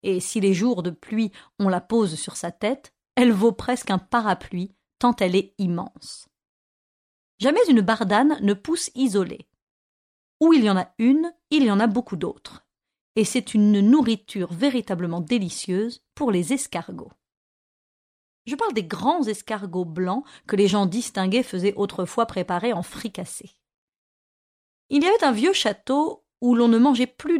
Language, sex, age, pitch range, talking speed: French, female, 30-49, 185-250 Hz, 160 wpm